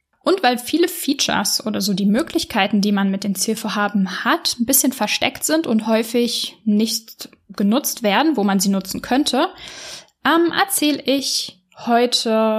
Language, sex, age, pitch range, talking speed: German, female, 10-29, 200-255 Hz, 155 wpm